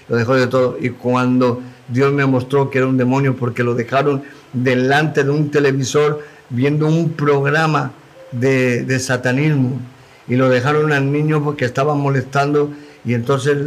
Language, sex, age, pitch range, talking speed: Spanish, male, 50-69, 130-145 Hz, 160 wpm